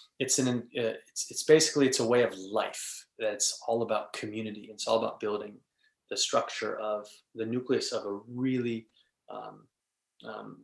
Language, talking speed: English, 160 wpm